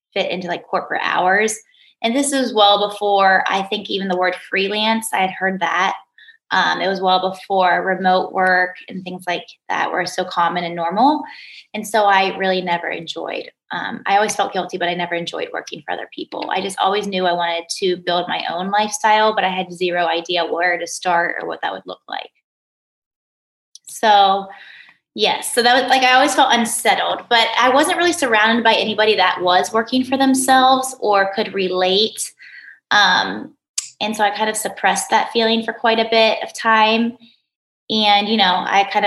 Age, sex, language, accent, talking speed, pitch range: 20-39, female, English, American, 190 wpm, 180-225 Hz